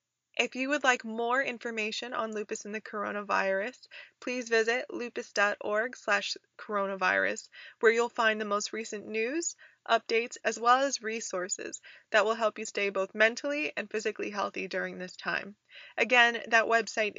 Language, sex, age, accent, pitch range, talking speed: English, female, 20-39, American, 205-255 Hz, 155 wpm